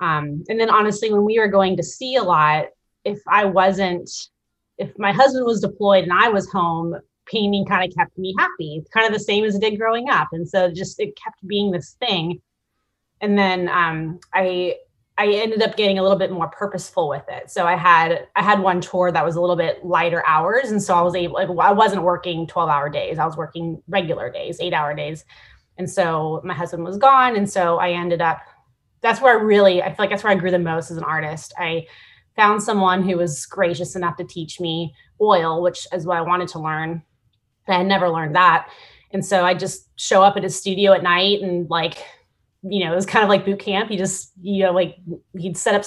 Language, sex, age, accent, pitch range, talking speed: English, female, 20-39, American, 170-200 Hz, 230 wpm